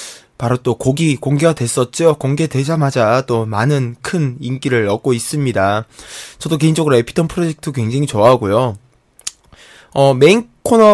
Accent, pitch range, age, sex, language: native, 120-165 Hz, 20-39, male, Korean